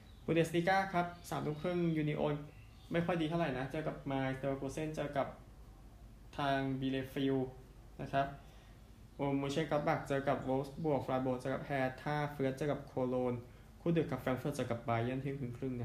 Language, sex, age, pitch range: Thai, male, 20-39, 120-145 Hz